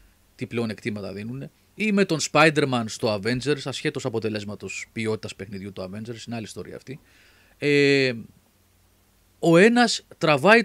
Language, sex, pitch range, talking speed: Greek, male, 100-150 Hz, 135 wpm